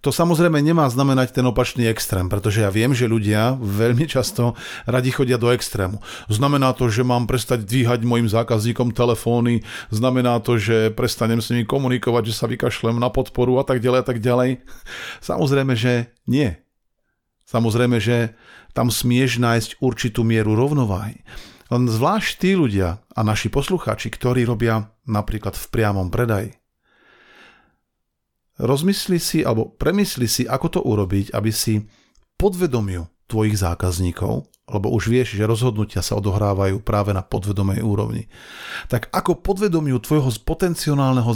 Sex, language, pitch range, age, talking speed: male, Slovak, 110-130 Hz, 40-59, 140 wpm